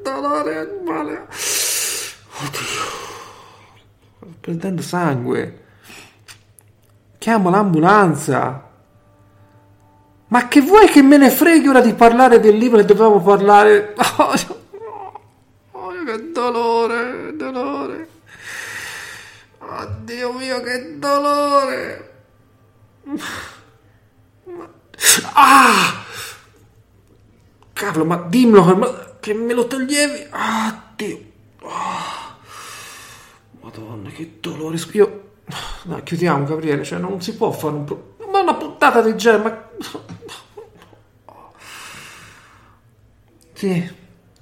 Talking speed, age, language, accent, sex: 95 wpm, 50-69, Italian, native, male